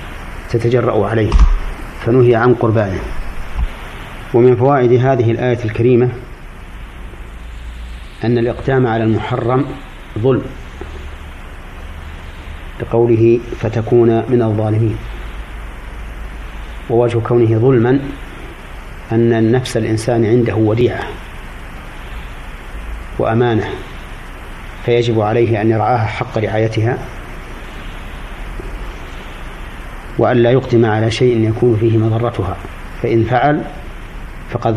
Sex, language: male, Arabic